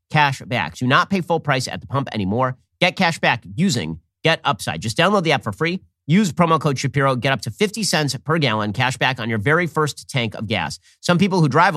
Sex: male